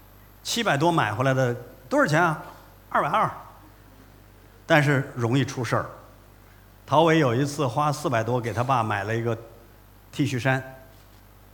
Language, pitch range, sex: Chinese, 105-150 Hz, male